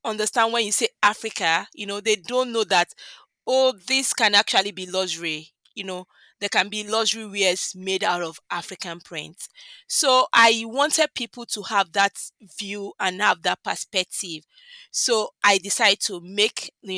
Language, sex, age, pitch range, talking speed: English, female, 20-39, 180-220 Hz, 165 wpm